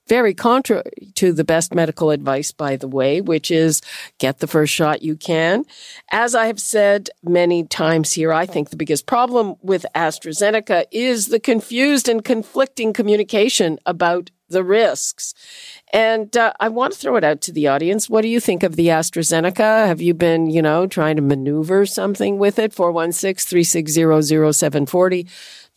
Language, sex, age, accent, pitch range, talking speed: English, female, 50-69, American, 155-205 Hz, 165 wpm